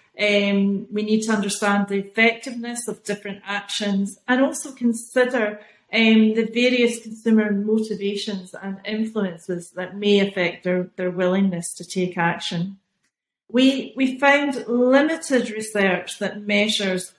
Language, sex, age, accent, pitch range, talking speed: English, female, 40-59, British, 200-235 Hz, 125 wpm